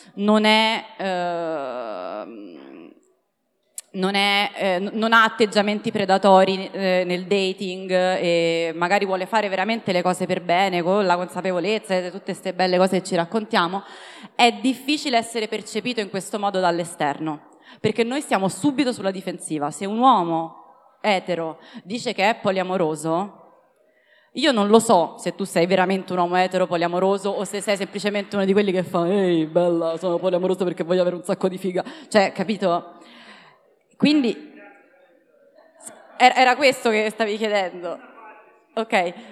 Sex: female